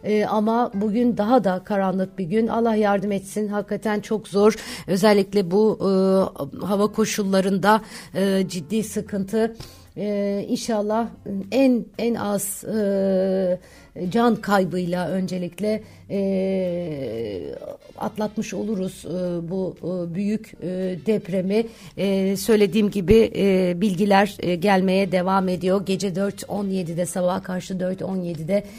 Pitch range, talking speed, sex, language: 180-210 Hz, 100 wpm, female, Turkish